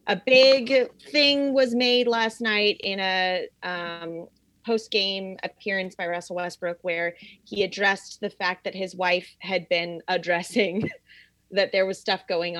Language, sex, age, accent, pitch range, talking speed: English, female, 20-39, American, 175-210 Hz, 150 wpm